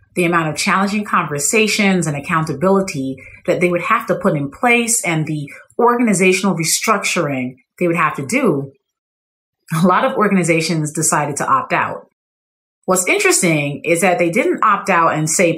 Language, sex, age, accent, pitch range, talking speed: English, female, 30-49, American, 155-205 Hz, 160 wpm